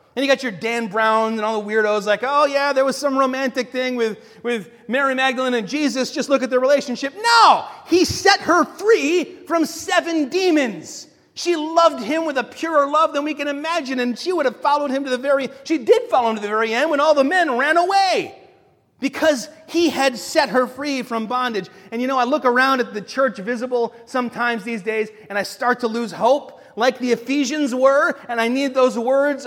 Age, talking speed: 30-49, 220 wpm